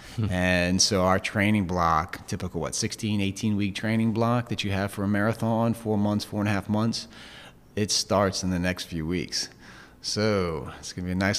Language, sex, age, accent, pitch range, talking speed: English, male, 30-49, American, 85-105 Hz, 205 wpm